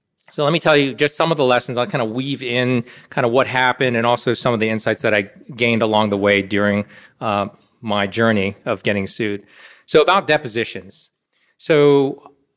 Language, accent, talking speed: English, American, 200 wpm